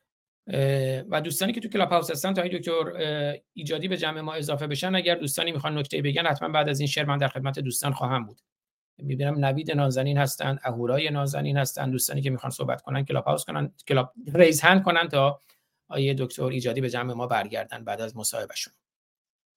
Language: Persian